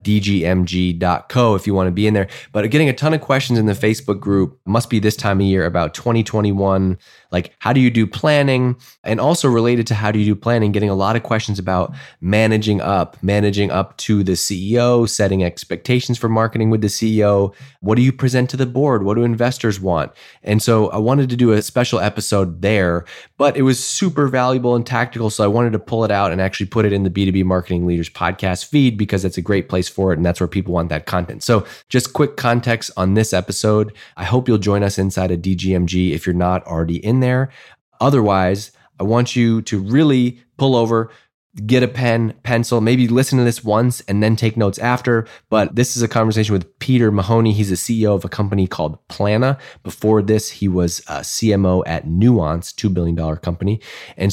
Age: 20-39